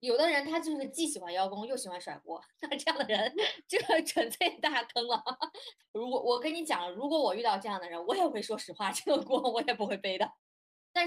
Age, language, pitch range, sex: 20-39, Chinese, 185-285 Hz, female